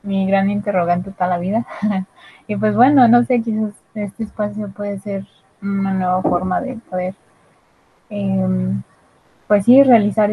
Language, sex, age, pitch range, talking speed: Spanish, female, 20-39, 185-215 Hz, 145 wpm